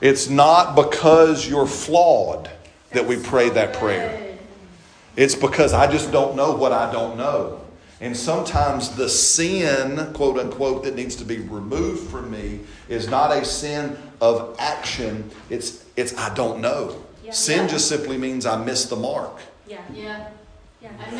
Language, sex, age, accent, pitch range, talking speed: English, male, 40-59, American, 110-145 Hz, 150 wpm